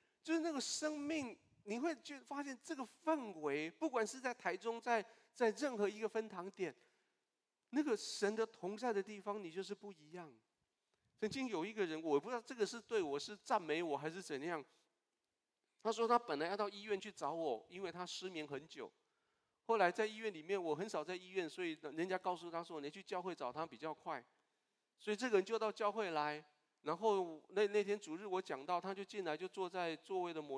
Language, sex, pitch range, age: Chinese, male, 165-220 Hz, 40-59